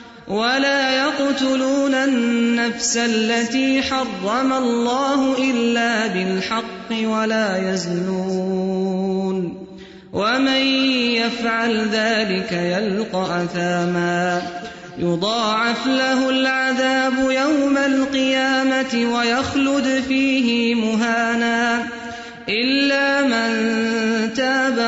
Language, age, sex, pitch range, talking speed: English, 30-49, male, 200-260 Hz, 65 wpm